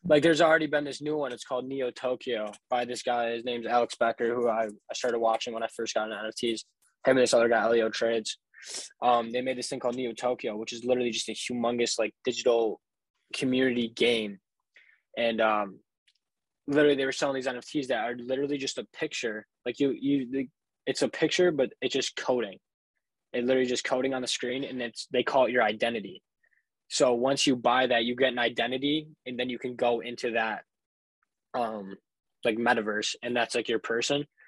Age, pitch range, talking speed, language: 20-39, 120-140 Hz, 200 wpm, English